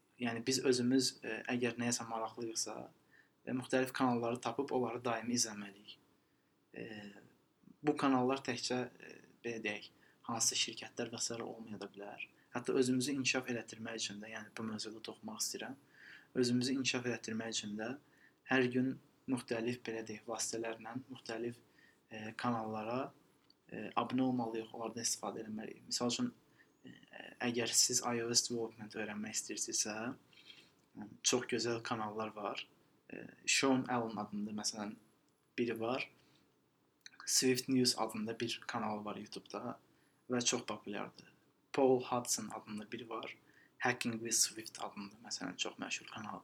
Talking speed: 120 wpm